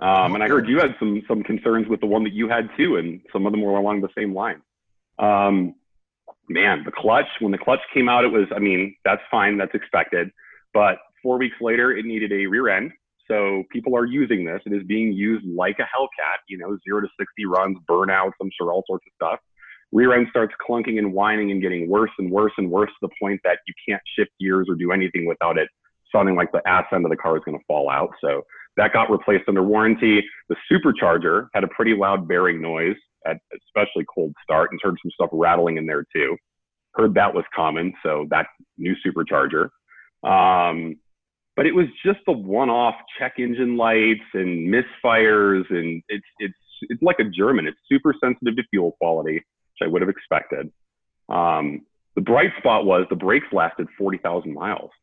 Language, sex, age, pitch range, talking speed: English, male, 30-49, 95-115 Hz, 205 wpm